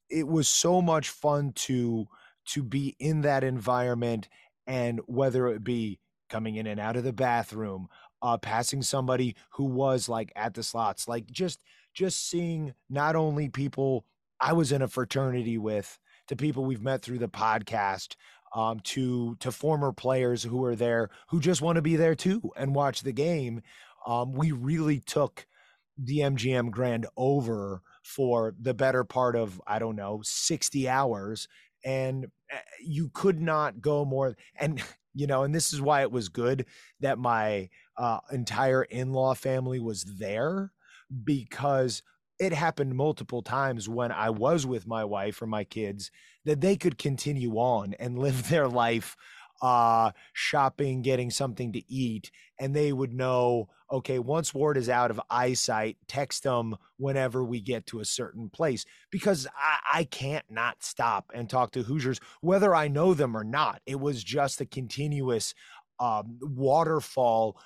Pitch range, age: 115-140 Hz, 30-49